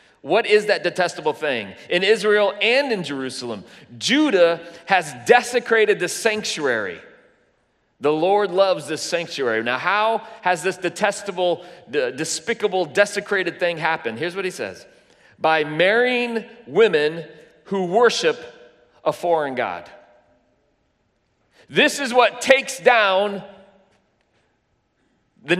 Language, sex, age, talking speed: English, male, 30-49, 110 wpm